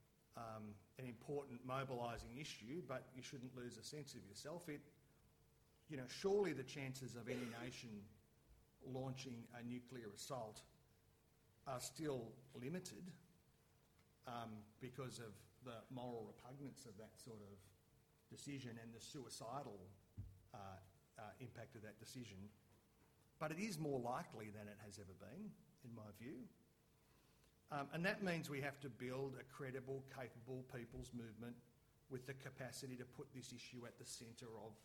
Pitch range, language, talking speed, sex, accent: 115-140 Hz, English, 150 wpm, male, Australian